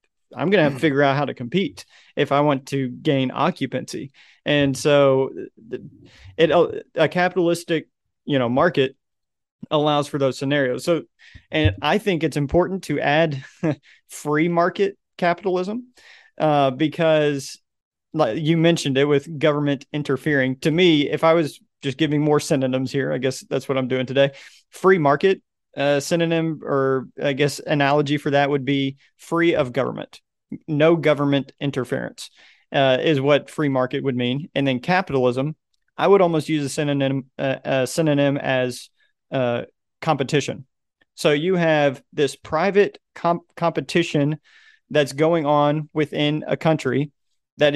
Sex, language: male, English